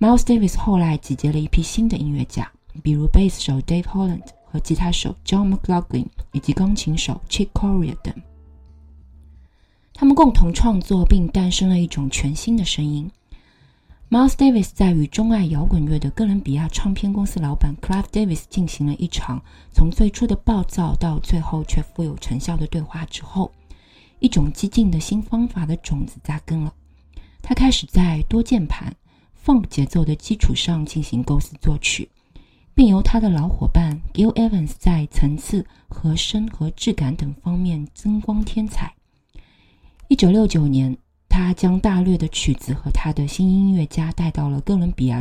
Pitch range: 150-195 Hz